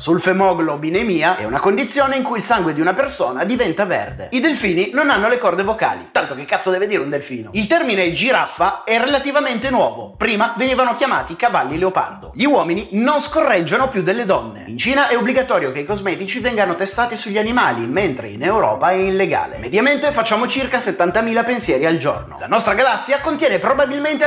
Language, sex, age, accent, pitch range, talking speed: Italian, male, 30-49, native, 185-265 Hz, 180 wpm